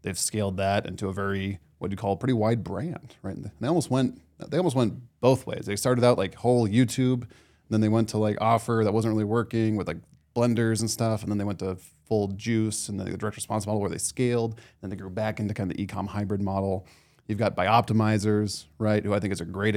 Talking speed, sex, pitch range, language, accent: 245 wpm, male, 95-110 Hz, English, American